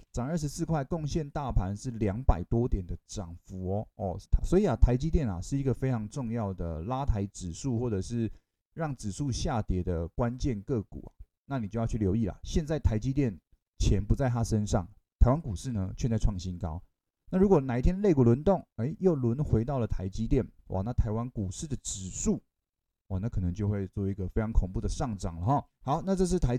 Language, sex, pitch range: Chinese, male, 95-135 Hz